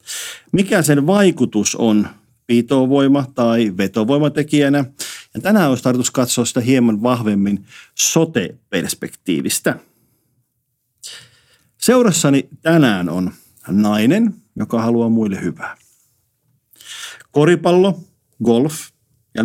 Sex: male